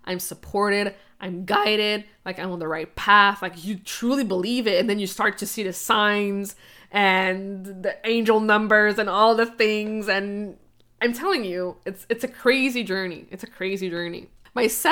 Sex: female